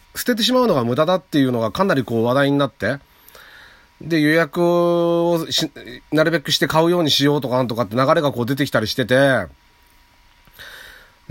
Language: Japanese